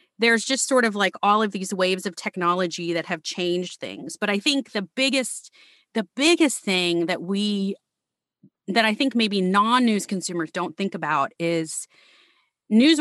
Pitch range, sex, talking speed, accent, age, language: 175-230 Hz, female, 165 wpm, American, 30-49, English